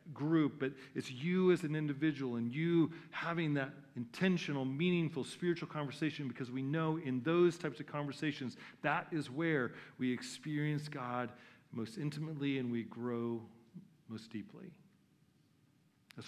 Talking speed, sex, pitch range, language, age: 135 wpm, male, 120-155 Hz, English, 40-59